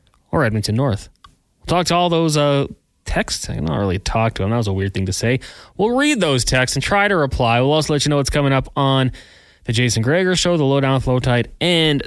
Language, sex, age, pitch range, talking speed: English, male, 20-39, 115-150 Hz, 250 wpm